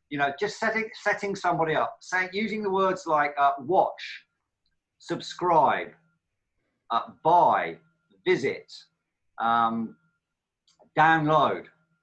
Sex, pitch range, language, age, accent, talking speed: male, 120-170 Hz, English, 40-59, British, 100 wpm